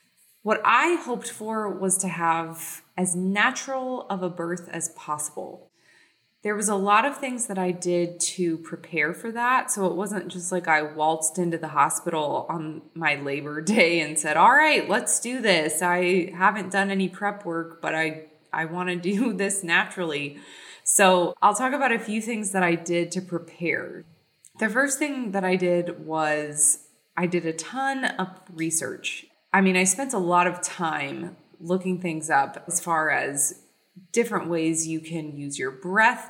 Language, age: English, 20-39